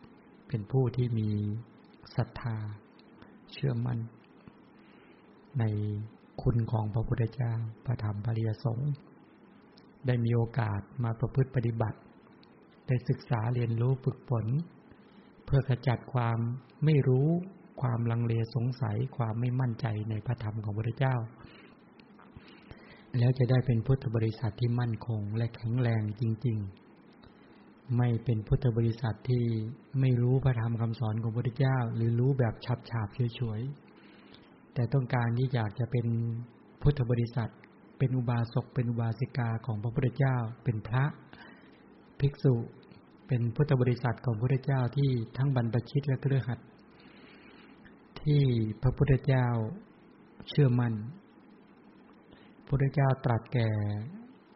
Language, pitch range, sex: English, 115-130 Hz, male